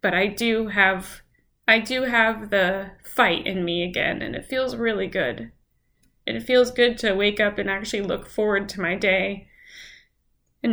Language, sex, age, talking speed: English, female, 10-29, 180 wpm